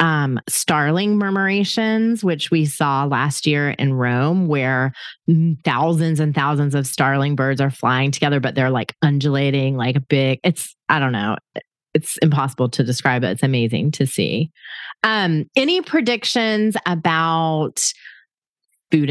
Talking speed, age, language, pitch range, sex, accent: 140 wpm, 30-49, English, 140-180 Hz, female, American